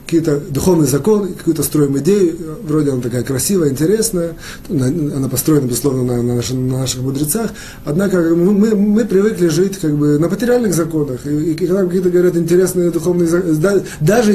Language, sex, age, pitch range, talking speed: Russian, male, 30-49, 140-185 Hz, 150 wpm